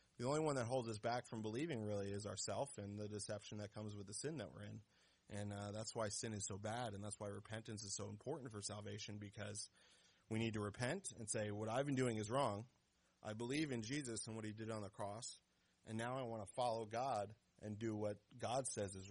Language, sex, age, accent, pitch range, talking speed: English, male, 30-49, American, 105-120 Hz, 240 wpm